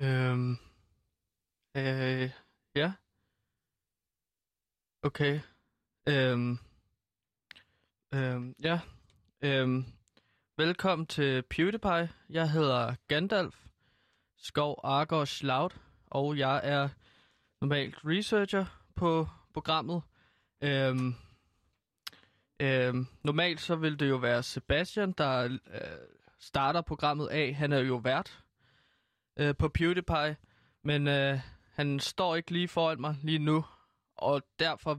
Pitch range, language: 125-155 Hz, Danish